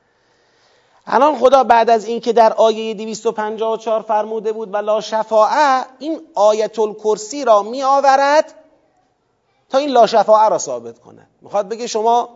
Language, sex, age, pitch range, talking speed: Persian, male, 30-49, 215-280 Hz, 140 wpm